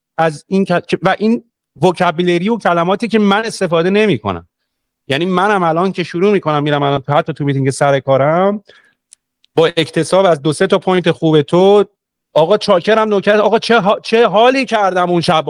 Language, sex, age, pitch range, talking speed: Persian, male, 40-59, 130-185 Hz, 170 wpm